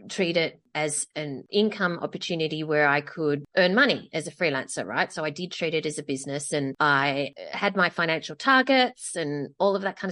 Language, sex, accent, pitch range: English, female, Australian, 160-200 Hz